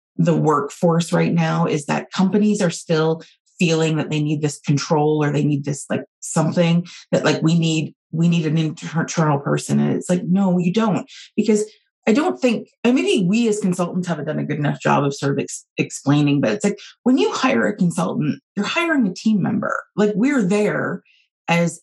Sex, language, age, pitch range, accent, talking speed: female, English, 30-49, 155-215 Hz, American, 200 wpm